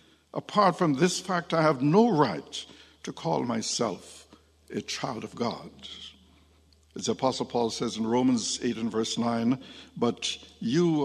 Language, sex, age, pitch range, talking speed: English, male, 60-79, 115-170 Hz, 150 wpm